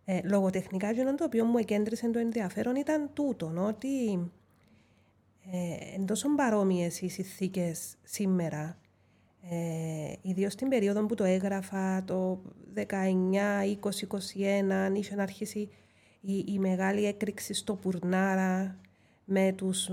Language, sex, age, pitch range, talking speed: Greek, female, 30-49, 175-210 Hz, 115 wpm